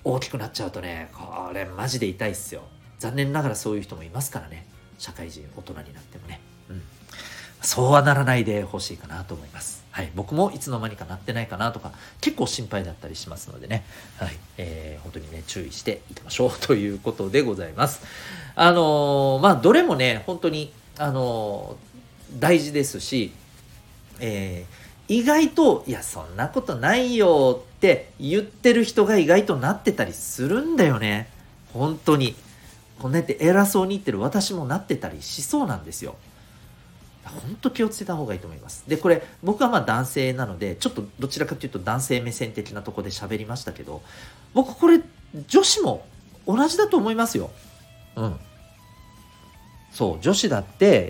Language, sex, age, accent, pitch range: Japanese, male, 40-59, native, 100-155 Hz